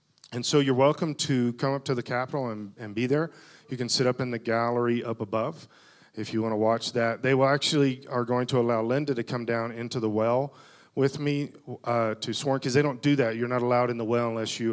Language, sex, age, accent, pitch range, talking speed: English, male, 40-59, American, 115-145 Hz, 250 wpm